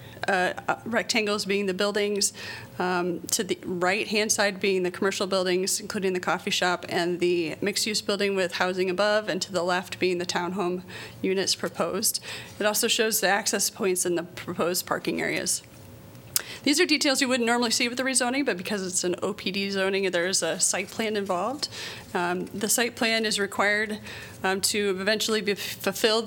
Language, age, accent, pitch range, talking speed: English, 30-49, American, 185-215 Hz, 180 wpm